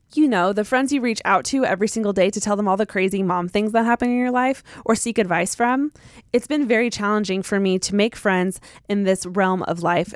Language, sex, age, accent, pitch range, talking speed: English, female, 20-39, American, 185-230 Hz, 250 wpm